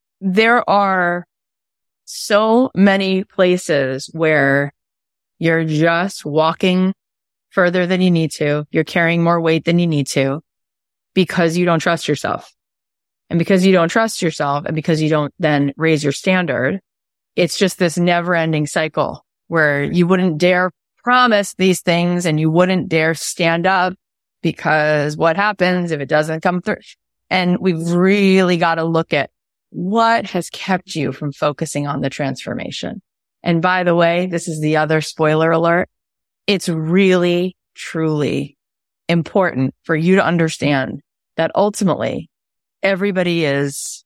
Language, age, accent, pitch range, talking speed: English, 20-39, American, 145-180 Hz, 145 wpm